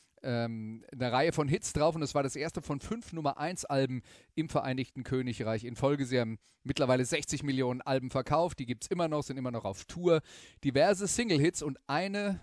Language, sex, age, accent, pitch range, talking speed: German, male, 30-49, German, 125-155 Hz, 200 wpm